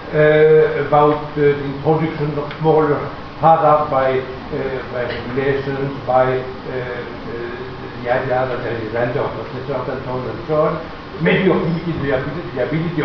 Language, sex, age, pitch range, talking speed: Italian, male, 60-79, 145-190 Hz, 170 wpm